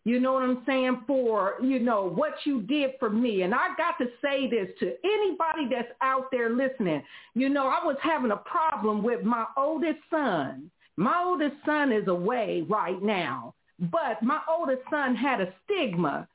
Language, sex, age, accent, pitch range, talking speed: English, female, 50-69, American, 235-300 Hz, 185 wpm